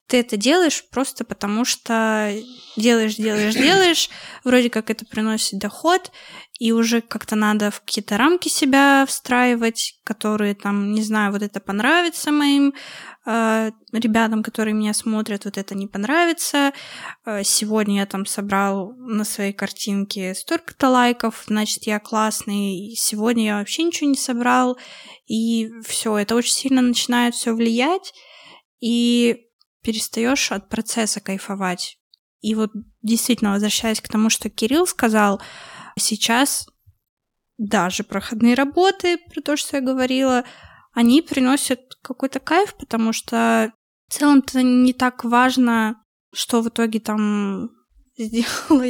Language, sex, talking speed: Russian, female, 130 wpm